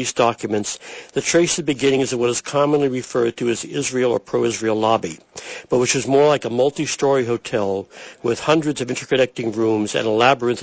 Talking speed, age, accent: 185 wpm, 60-79, American